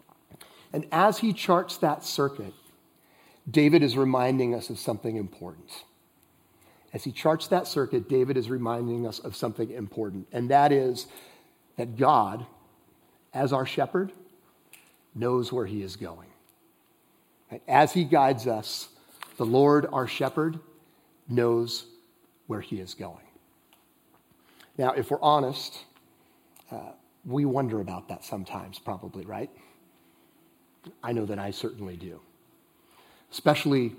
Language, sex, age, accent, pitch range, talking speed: English, male, 40-59, American, 115-140 Hz, 125 wpm